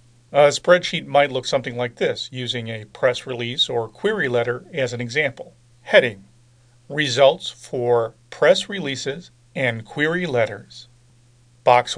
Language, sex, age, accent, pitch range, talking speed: English, male, 40-59, American, 120-145 Hz, 130 wpm